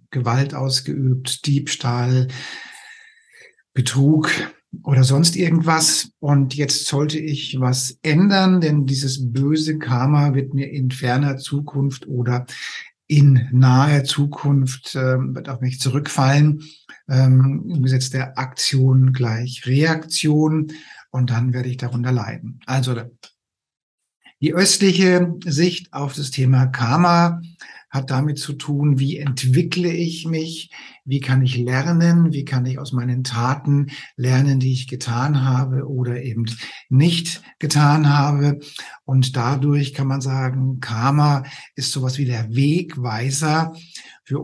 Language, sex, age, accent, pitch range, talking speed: German, male, 60-79, German, 130-150 Hz, 125 wpm